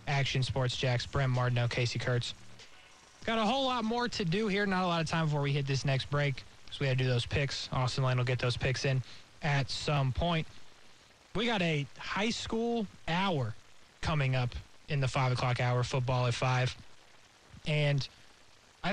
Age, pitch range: 20-39, 130-165 Hz